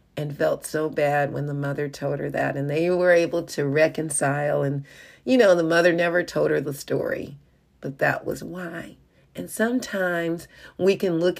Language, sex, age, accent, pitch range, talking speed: English, female, 40-59, American, 155-180 Hz, 185 wpm